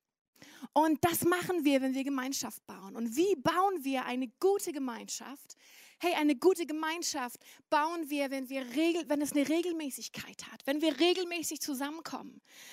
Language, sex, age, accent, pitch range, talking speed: German, female, 30-49, German, 265-325 Hz, 155 wpm